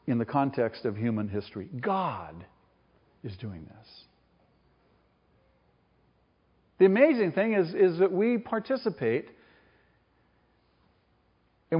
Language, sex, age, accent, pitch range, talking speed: English, male, 50-69, American, 120-170 Hz, 95 wpm